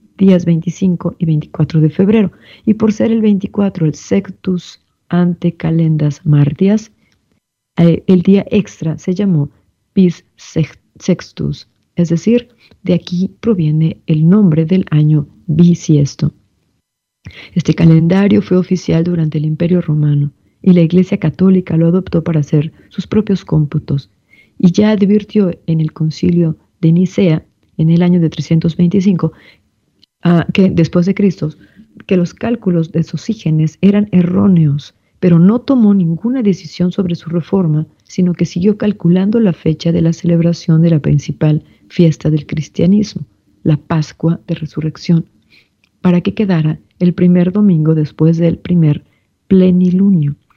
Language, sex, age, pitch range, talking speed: Spanish, female, 40-59, 155-190 Hz, 135 wpm